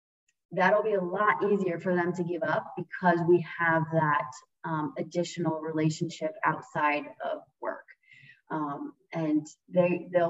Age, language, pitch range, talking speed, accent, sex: 20-39, English, 160-190 Hz, 140 wpm, American, female